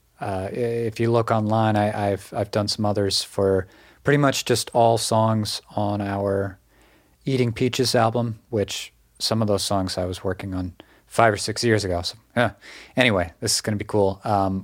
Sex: male